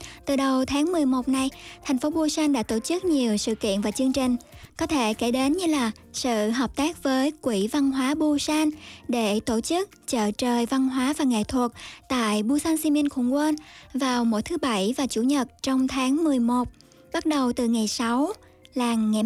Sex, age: male, 20-39